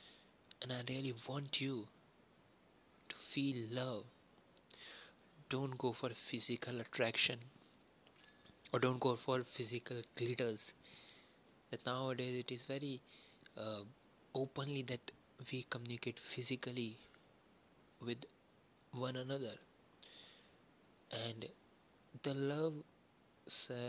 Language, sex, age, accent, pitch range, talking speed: Hindi, male, 20-39, native, 120-130 Hz, 95 wpm